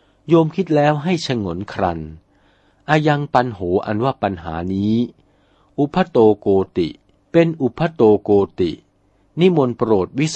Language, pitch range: Thai, 95-135 Hz